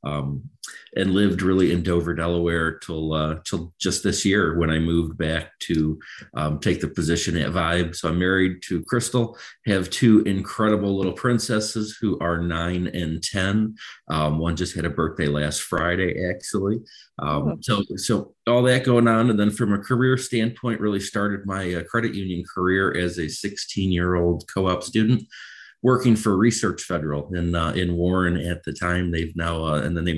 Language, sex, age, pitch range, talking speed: English, male, 40-59, 85-100 Hz, 180 wpm